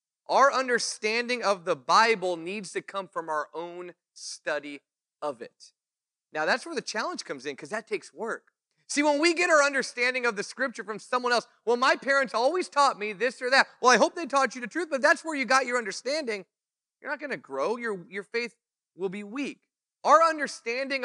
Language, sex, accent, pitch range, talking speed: English, male, American, 185-270 Hz, 210 wpm